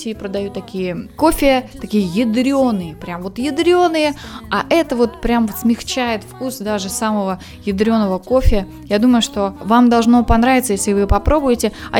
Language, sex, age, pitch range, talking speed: Russian, female, 20-39, 200-255 Hz, 145 wpm